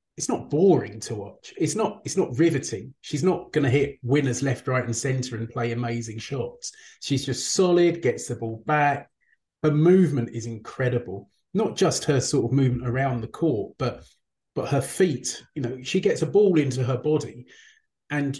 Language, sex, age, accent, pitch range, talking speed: English, male, 30-49, British, 125-170 Hz, 190 wpm